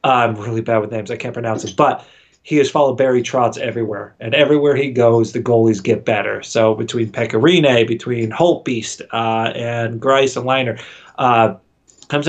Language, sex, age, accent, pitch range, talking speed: English, male, 30-49, American, 115-145 Hz, 175 wpm